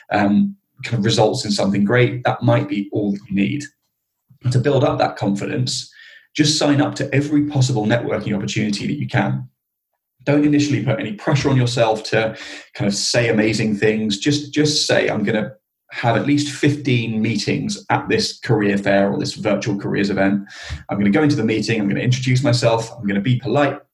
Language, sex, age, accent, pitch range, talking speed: English, male, 20-39, British, 100-135 Hz, 195 wpm